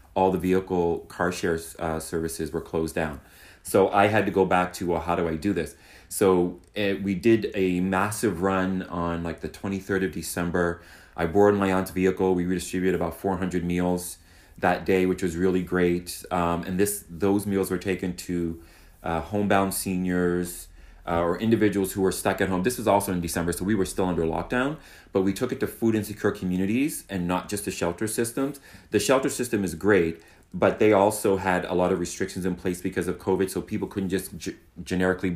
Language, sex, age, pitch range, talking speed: English, male, 30-49, 90-100 Hz, 200 wpm